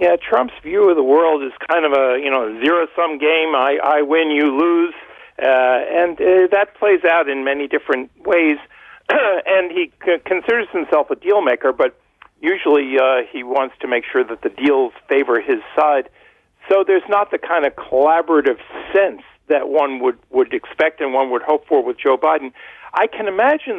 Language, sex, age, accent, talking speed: English, male, 50-69, American, 190 wpm